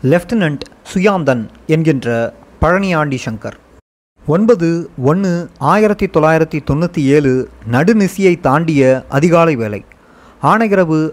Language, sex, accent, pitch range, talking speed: Tamil, male, native, 145-195 Hz, 85 wpm